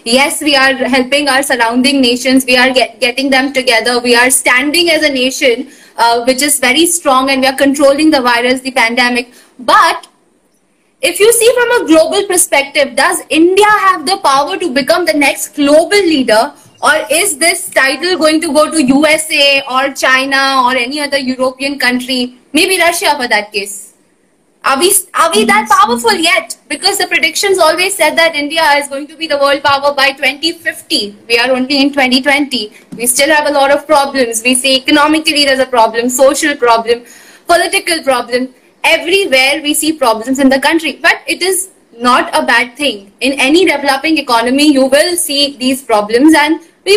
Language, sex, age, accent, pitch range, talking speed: Hindi, female, 20-39, native, 260-330 Hz, 180 wpm